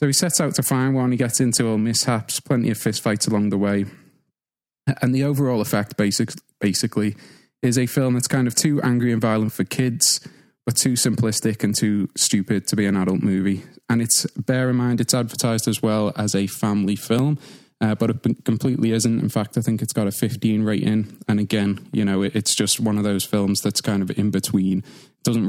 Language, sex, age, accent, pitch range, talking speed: English, male, 20-39, British, 105-125 Hz, 210 wpm